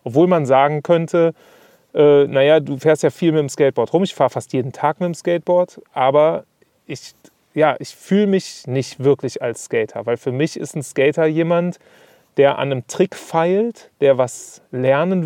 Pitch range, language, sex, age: 130-155 Hz, German, male, 30-49